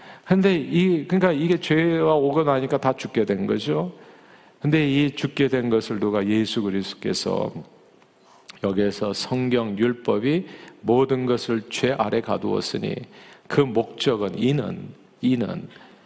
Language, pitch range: Korean, 115-155 Hz